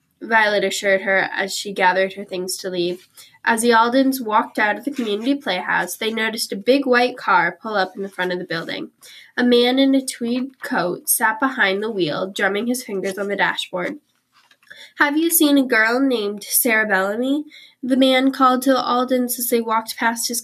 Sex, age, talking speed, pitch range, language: female, 10-29, 200 wpm, 195-260 Hz, English